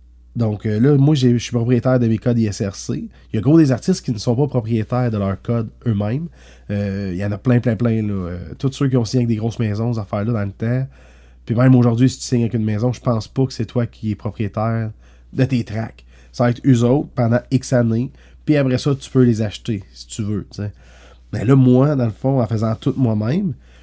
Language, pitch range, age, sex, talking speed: French, 105-130 Hz, 30-49, male, 255 wpm